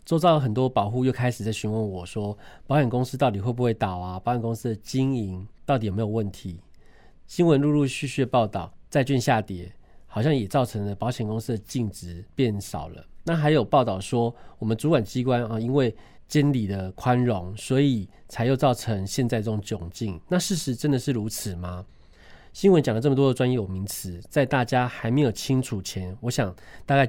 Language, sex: Chinese, male